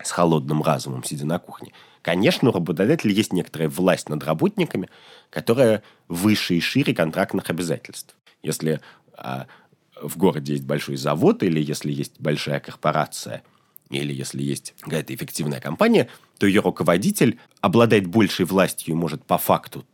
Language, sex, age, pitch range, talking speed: Russian, male, 30-49, 75-105 Hz, 140 wpm